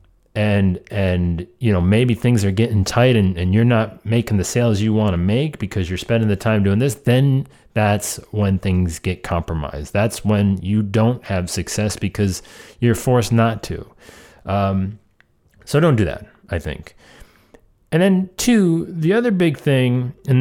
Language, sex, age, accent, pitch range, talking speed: English, male, 30-49, American, 95-115 Hz, 175 wpm